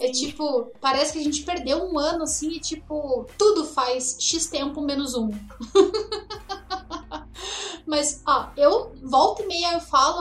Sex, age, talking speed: female, 10-29, 155 wpm